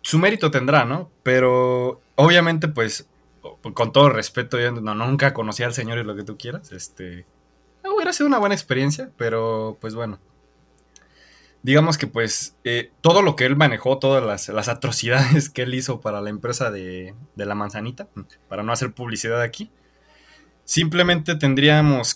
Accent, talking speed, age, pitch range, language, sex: Mexican, 160 wpm, 20-39, 110-155 Hz, Spanish, male